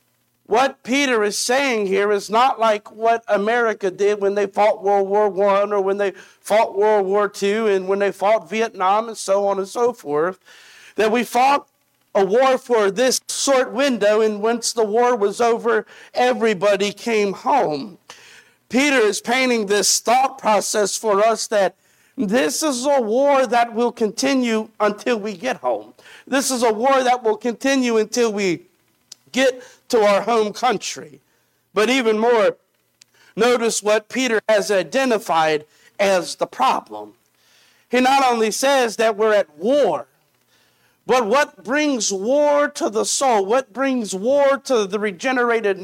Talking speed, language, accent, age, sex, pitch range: 155 wpm, English, American, 50-69, male, 200-255 Hz